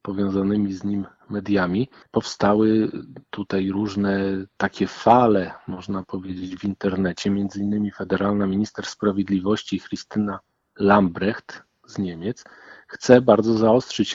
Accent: native